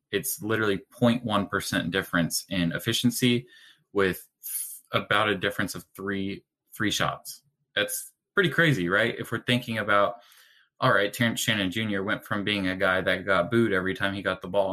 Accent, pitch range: American, 100-135 Hz